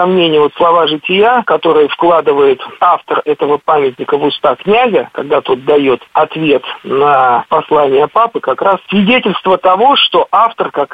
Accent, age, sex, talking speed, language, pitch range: native, 50-69, male, 145 wpm, Russian, 155-230 Hz